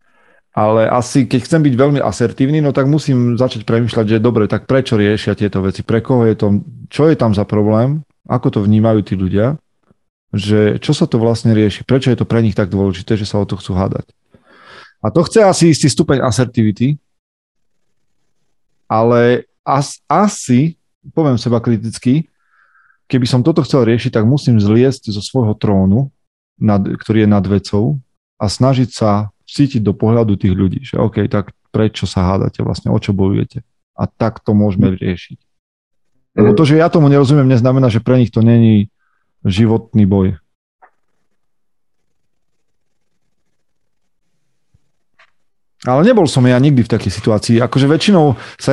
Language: Slovak